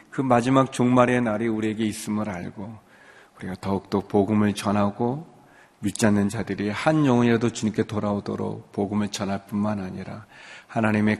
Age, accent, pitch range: 40-59, native, 105-130 Hz